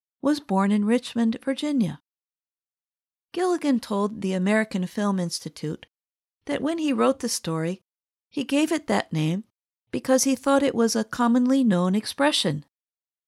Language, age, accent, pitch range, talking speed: English, 50-69, American, 195-260 Hz, 140 wpm